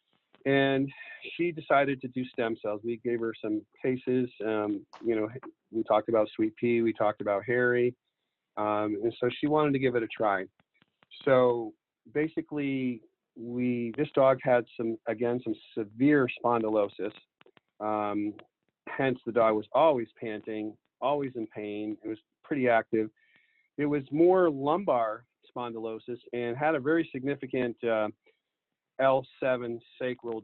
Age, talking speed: 40-59, 140 wpm